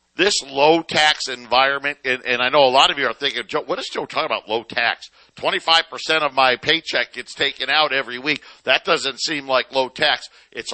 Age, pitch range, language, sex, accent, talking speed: 50-69, 130-165 Hz, English, male, American, 225 wpm